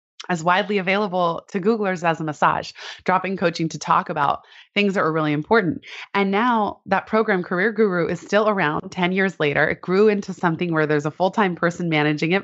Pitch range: 165-220 Hz